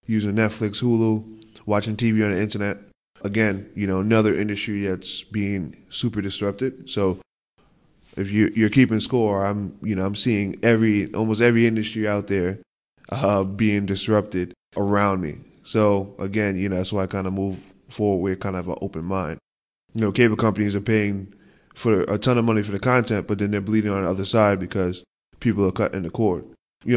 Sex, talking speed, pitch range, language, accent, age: male, 185 wpm, 95-110 Hz, English, American, 10-29